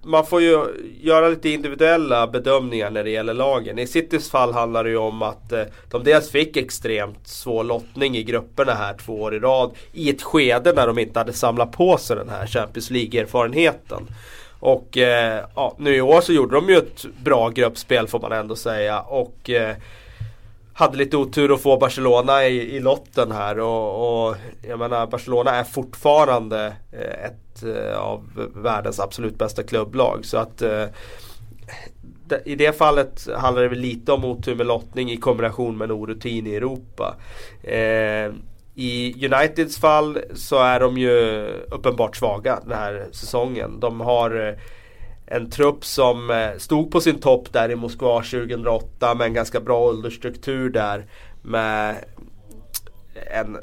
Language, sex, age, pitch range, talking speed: Swedish, male, 30-49, 110-130 Hz, 155 wpm